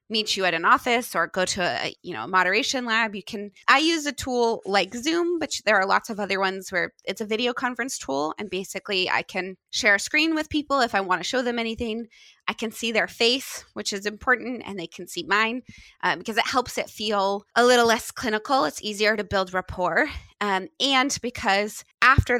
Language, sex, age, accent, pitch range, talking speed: English, female, 20-39, American, 195-250 Hz, 220 wpm